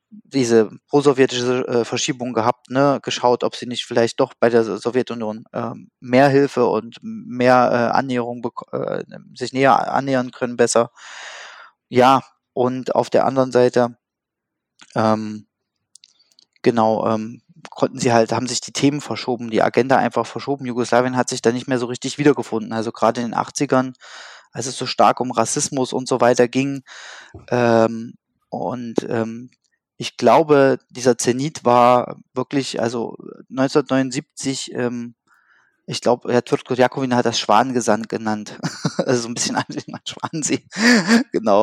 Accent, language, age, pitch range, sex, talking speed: German, German, 20-39, 115-135 Hz, male, 145 wpm